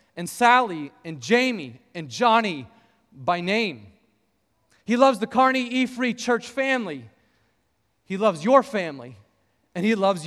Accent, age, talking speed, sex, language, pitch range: American, 30-49, 135 wpm, male, English, 180-250 Hz